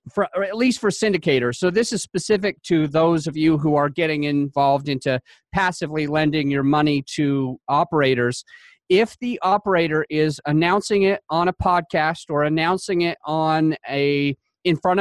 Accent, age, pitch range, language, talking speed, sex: American, 40-59, 145-190 Hz, English, 165 wpm, male